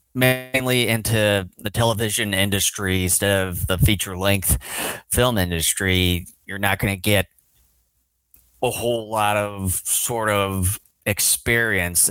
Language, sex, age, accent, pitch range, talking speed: English, male, 30-49, American, 90-110 Hz, 115 wpm